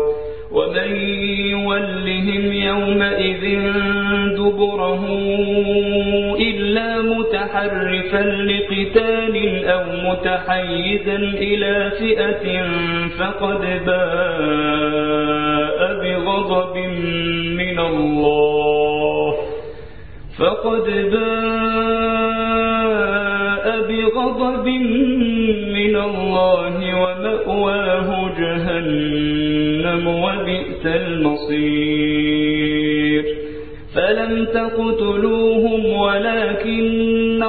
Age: 50-69